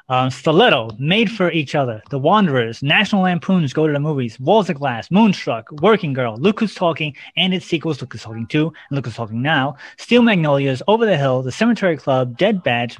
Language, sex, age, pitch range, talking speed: English, male, 30-49, 140-195 Hz, 210 wpm